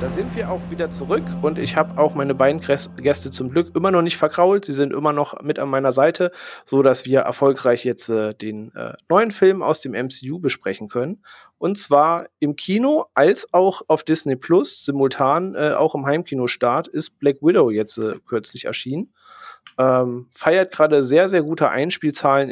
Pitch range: 125-160 Hz